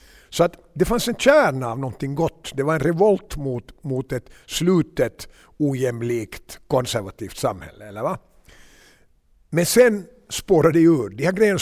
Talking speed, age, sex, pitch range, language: 155 wpm, 60-79, male, 115-145 Hz, Swedish